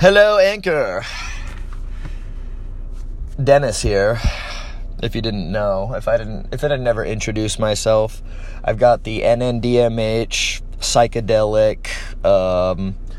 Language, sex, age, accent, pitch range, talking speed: English, male, 30-49, American, 85-110 Hz, 100 wpm